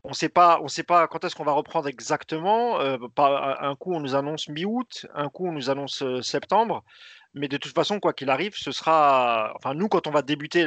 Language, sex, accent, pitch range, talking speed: French, male, French, 140-180 Hz, 225 wpm